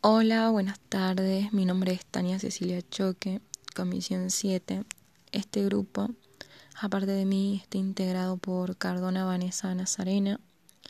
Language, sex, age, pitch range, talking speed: Spanish, female, 20-39, 185-210 Hz, 120 wpm